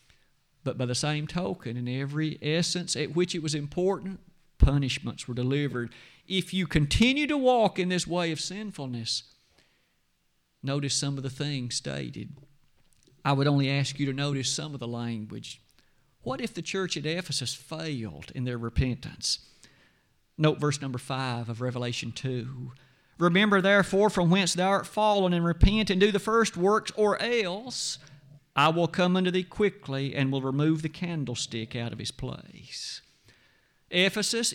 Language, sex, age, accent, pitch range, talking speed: English, male, 50-69, American, 130-180 Hz, 160 wpm